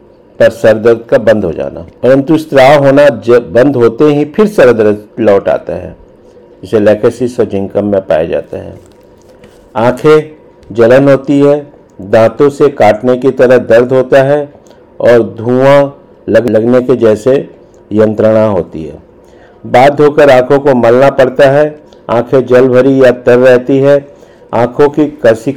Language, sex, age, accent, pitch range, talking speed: Hindi, male, 50-69, native, 120-145 Hz, 150 wpm